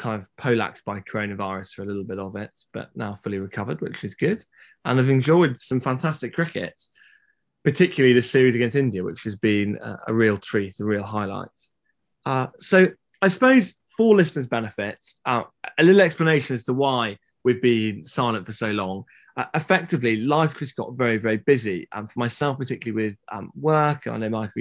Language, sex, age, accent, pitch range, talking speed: English, male, 20-39, British, 110-150 Hz, 190 wpm